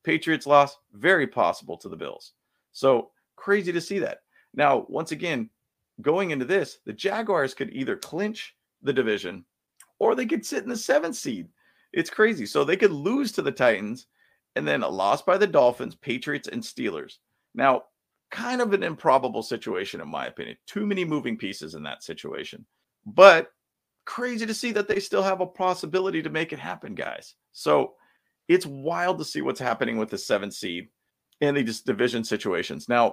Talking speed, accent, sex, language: 180 wpm, American, male, English